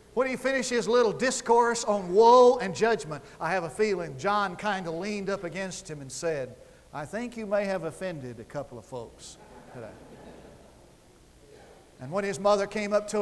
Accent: American